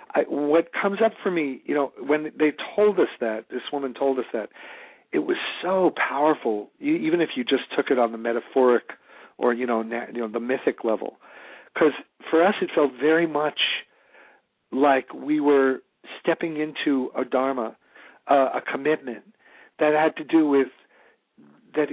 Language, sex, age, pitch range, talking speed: English, male, 50-69, 125-160 Hz, 165 wpm